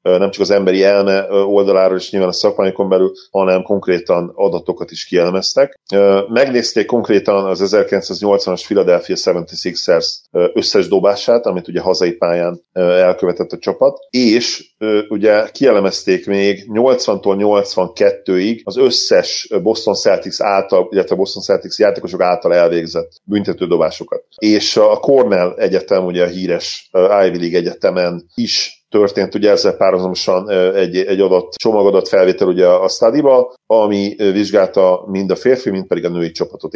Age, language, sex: 40-59, Hungarian, male